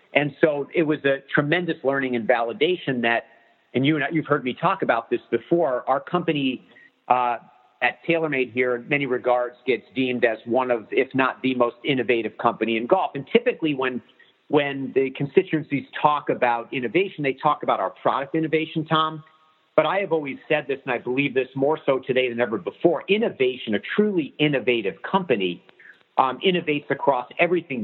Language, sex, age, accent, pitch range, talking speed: English, male, 50-69, American, 125-155 Hz, 185 wpm